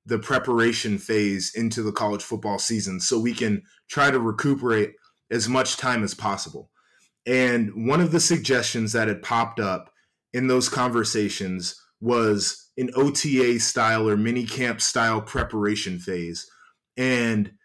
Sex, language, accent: male, English, American